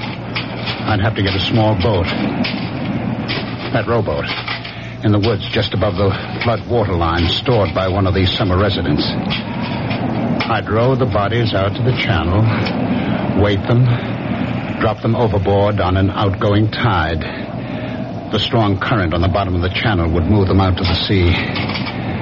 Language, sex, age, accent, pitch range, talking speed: English, male, 60-79, American, 90-110 Hz, 155 wpm